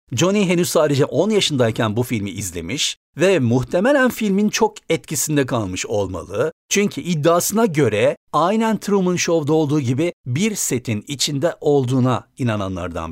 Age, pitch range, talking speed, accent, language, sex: 60-79, 120-175 Hz, 130 wpm, native, Turkish, male